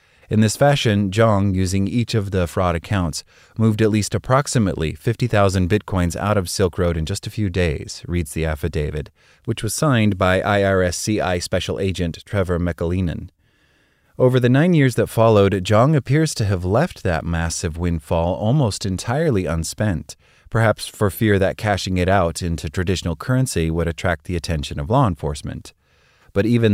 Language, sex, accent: English, male, American